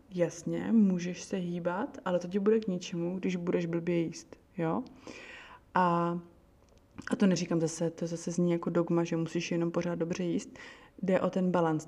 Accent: native